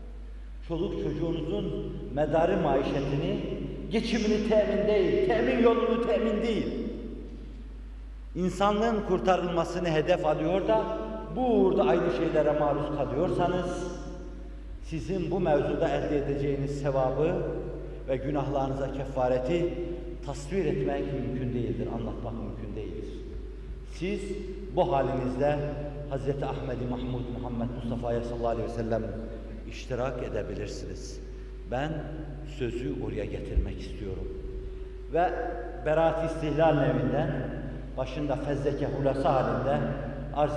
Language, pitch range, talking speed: Turkish, 125-165 Hz, 95 wpm